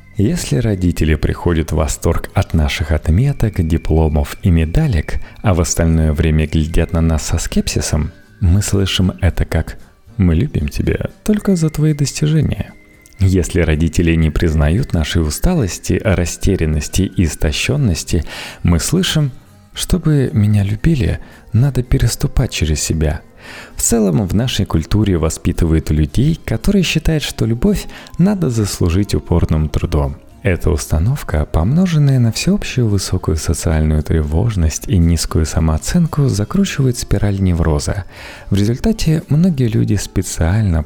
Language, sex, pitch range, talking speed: Russian, male, 80-125 Hz, 120 wpm